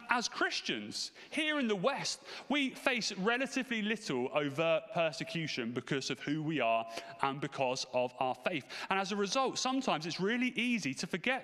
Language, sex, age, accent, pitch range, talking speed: English, male, 30-49, British, 140-230 Hz, 170 wpm